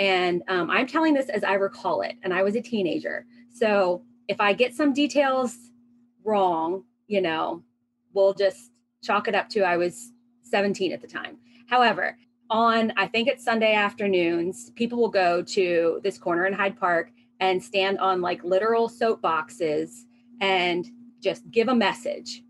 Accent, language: American, English